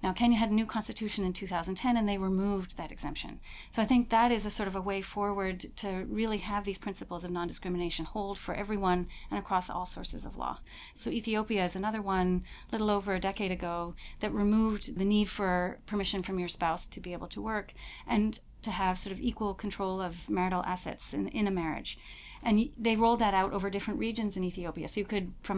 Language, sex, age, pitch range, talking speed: English, female, 30-49, 180-210 Hz, 220 wpm